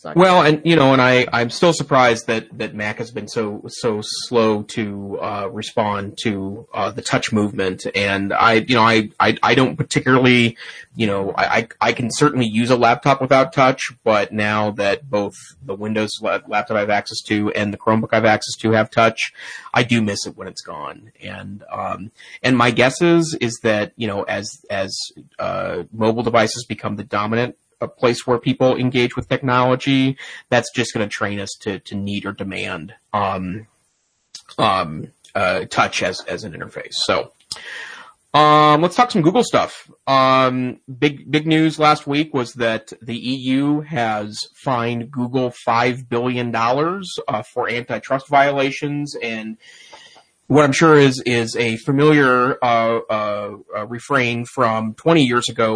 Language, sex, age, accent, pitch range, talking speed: English, male, 30-49, American, 110-130 Hz, 170 wpm